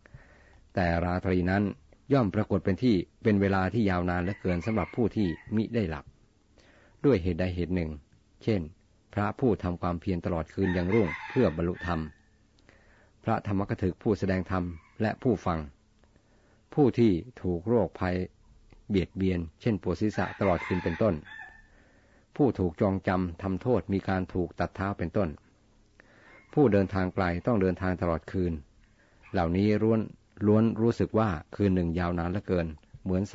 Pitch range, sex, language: 90-105 Hz, male, Thai